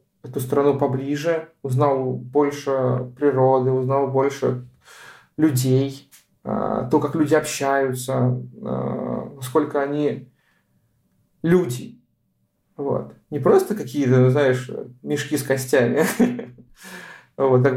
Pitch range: 125-145 Hz